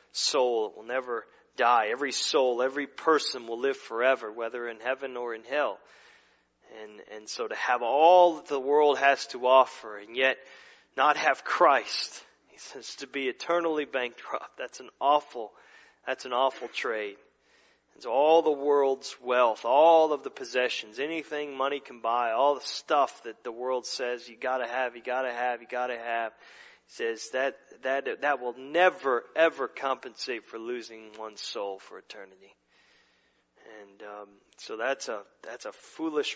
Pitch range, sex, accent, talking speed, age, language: 120-165 Hz, male, American, 165 wpm, 30-49, English